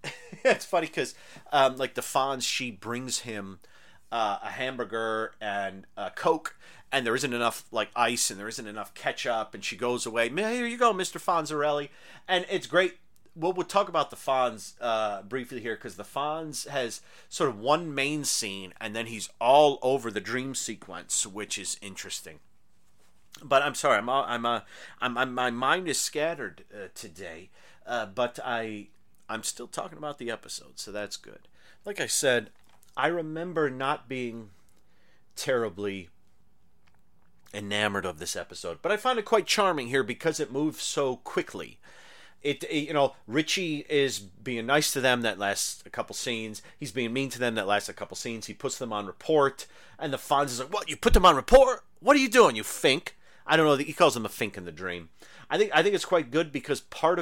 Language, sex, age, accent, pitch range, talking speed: English, male, 30-49, American, 110-155 Hz, 195 wpm